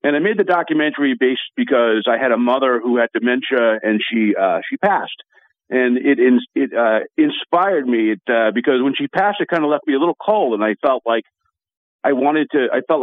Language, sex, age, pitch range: English, male, 50-69, 115-145 Hz